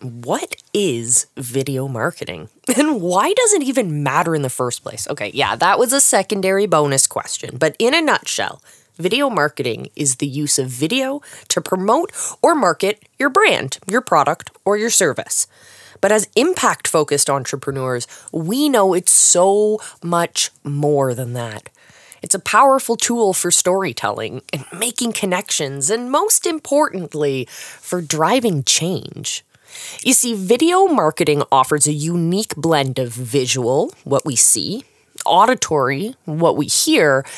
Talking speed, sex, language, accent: 140 wpm, female, English, American